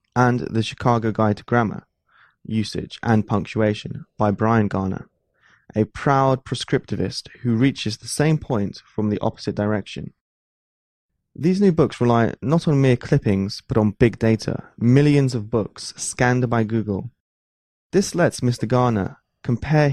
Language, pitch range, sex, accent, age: Chinese, 105-135 Hz, male, British, 20-39